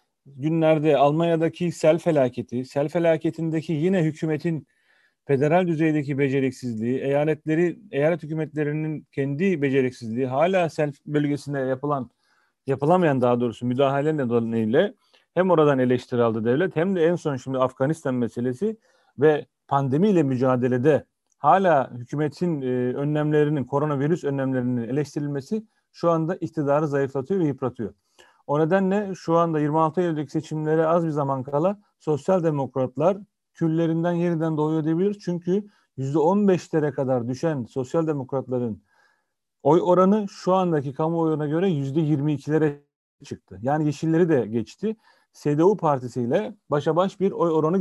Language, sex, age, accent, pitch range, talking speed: Turkish, male, 40-59, native, 135-170 Hz, 115 wpm